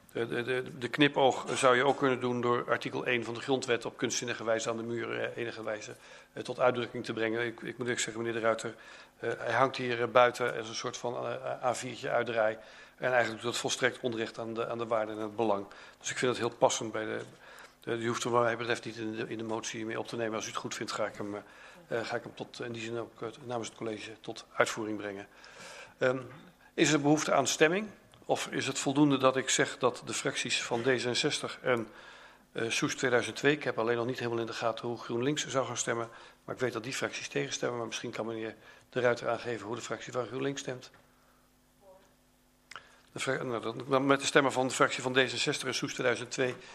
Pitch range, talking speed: 115-130 Hz, 220 wpm